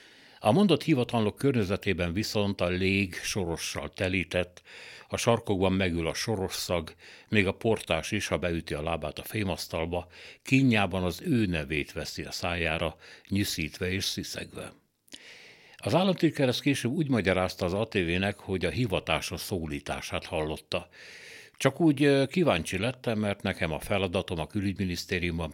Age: 60-79